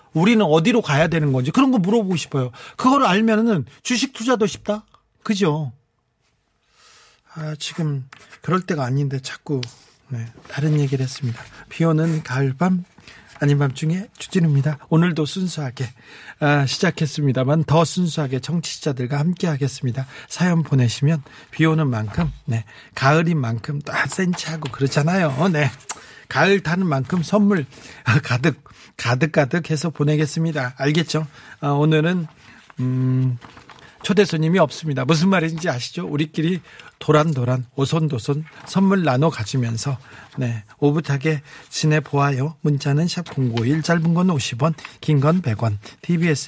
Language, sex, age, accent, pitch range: Korean, male, 40-59, native, 135-170 Hz